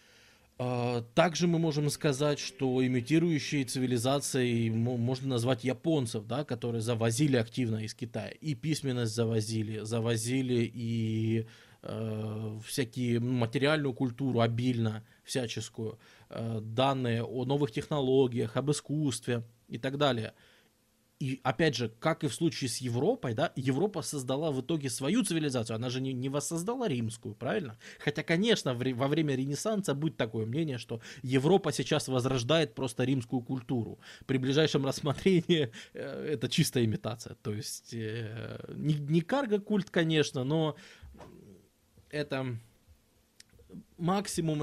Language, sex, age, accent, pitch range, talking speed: Russian, male, 20-39, native, 115-150 Hz, 120 wpm